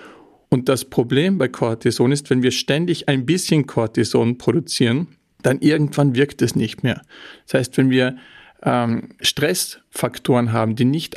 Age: 40-59